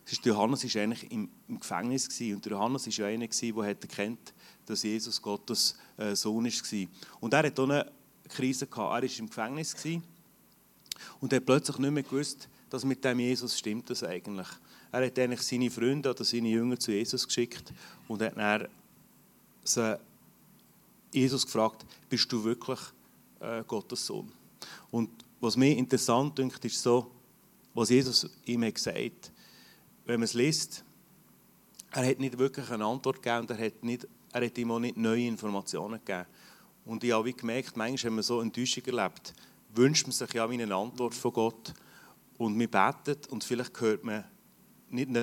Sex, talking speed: male, 155 wpm